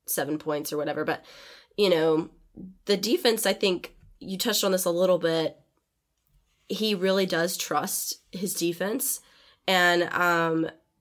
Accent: American